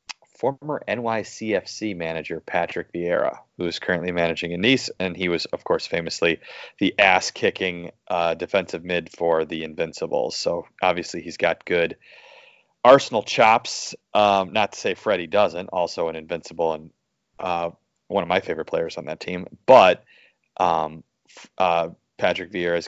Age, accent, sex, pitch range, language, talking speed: 30-49, American, male, 85-100 Hz, English, 145 wpm